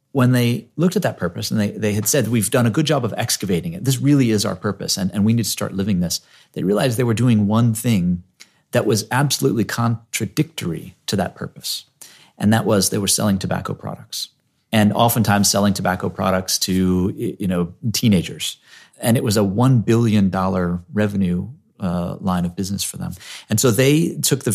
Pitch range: 95-120 Hz